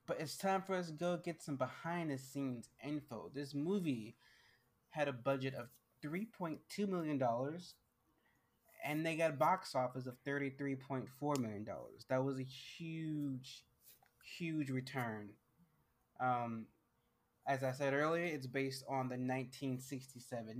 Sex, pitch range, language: male, 130-150 Hz, English